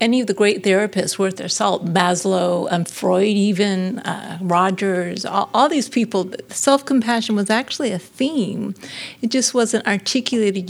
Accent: American